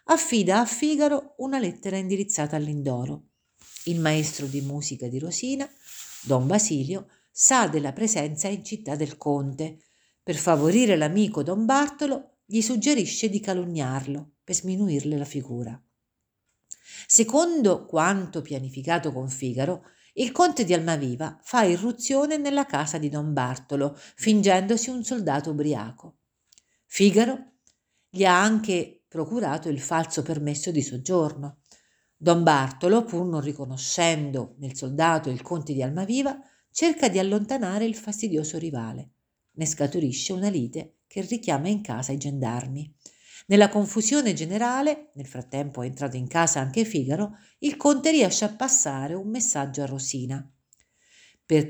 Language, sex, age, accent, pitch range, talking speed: Italian, female, 50-69, native, 140-220 Hz, 130 wpm